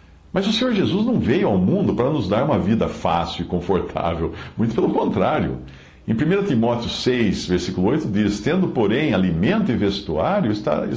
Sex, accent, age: male, Brazilian, 60-79